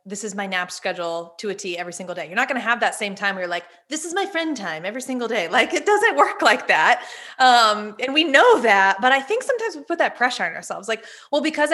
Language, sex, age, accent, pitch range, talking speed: English, female, 20-39, American, 195-275 Hz, 275 wpm